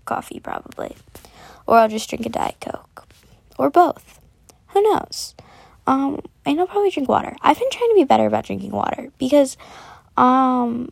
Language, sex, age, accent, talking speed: English, female, 10-29, American, 165 wpm